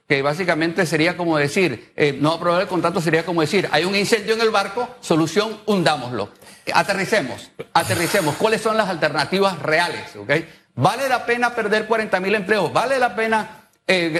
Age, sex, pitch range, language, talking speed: 50-69, male, 155-210 Hz, Spanish, 165 wpm